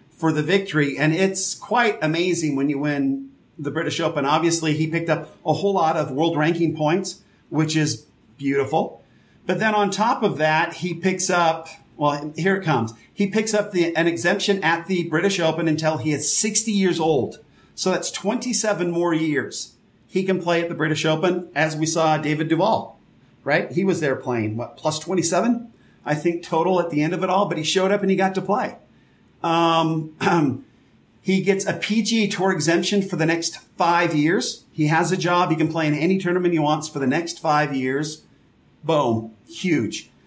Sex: male